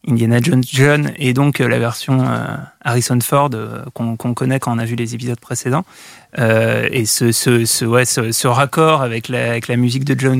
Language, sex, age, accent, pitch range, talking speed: French, male, 20-39, French, 120-145 Hz, 185 wpm